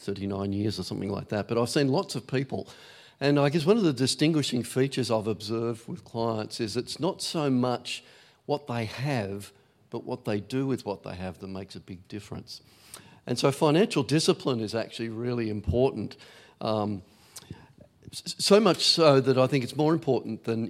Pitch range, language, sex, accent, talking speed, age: 110-135 Hz, English, male, Australian, 185 wpm, 50-69